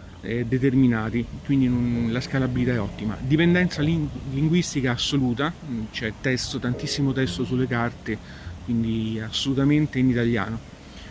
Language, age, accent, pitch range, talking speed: Italian, 40-59, native, 120-155 Hz, 115 wpm